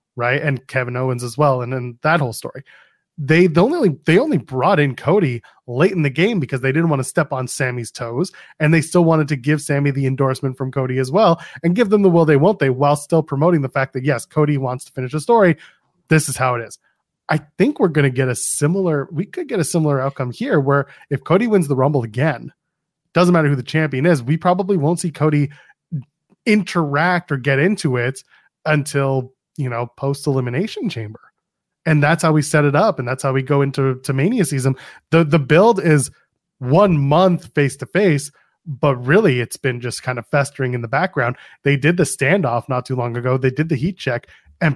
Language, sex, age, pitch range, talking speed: English, male, 20-39, 130-170 Hz, 220 wpm